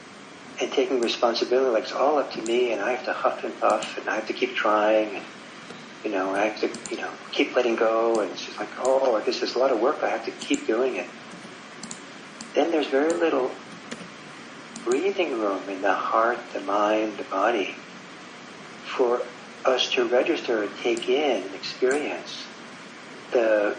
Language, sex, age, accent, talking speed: English, male, 50-69, American, 185 wpm